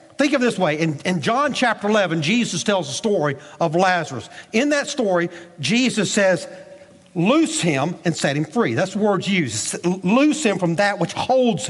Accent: American